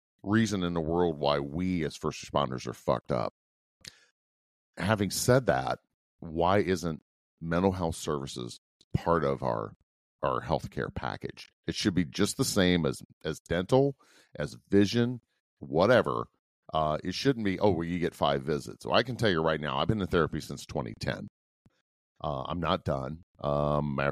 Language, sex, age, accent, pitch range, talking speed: English, male, 40-59, American, 70-95 Hz, 165 wpm